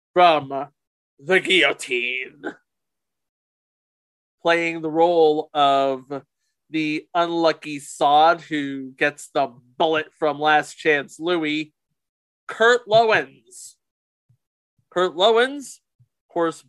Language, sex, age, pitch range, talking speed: English, male, 30-49, 150-210 Hz, 85 wpm